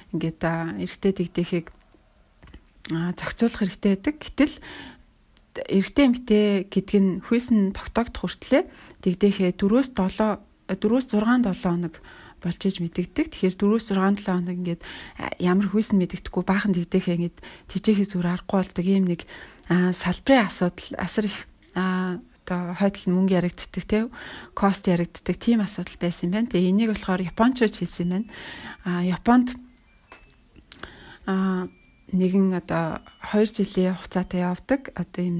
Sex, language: female, English